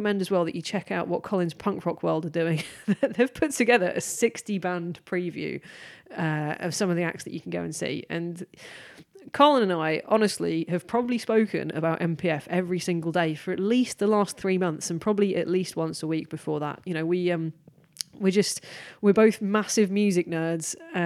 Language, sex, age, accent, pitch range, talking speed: English, female, 20-39, British, 165-210 Hz, 205 wpm